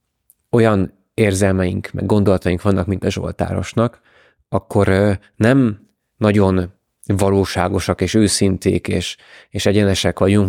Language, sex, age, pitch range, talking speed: Hungarian, male, 20-39, 95-105 Hz, 105 wpm